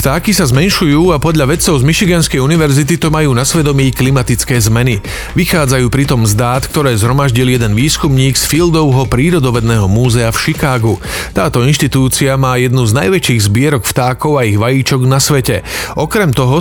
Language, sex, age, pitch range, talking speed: Slovak, male, 40-59, 120-145 Hz, 160 wpm